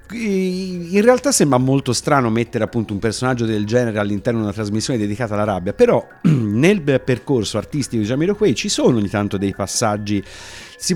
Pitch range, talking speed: 100-140 Hz, 175 wpm